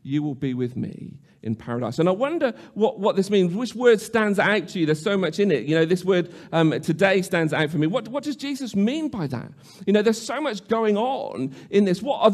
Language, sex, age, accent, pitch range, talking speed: English, male, 40-59, British, 160-205 Hz, 260 wpm